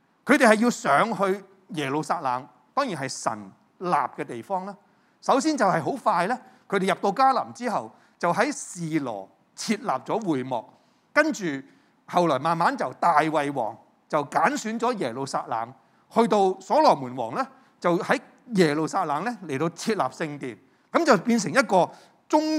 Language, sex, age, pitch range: Chinese, male, 30-49, 135-220 Hz